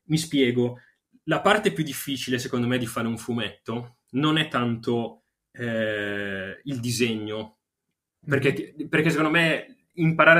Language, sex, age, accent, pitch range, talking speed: Italian, male, 20-39, native, 120-155 Hz, 135 wpm